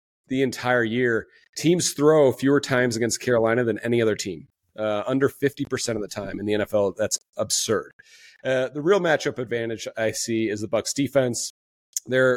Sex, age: male, 30-49